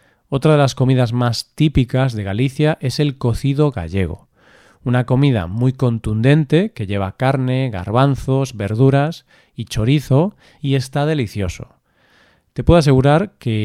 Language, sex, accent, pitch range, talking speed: Spanish, male, Spanish, 115-145 Hz, 130 wpm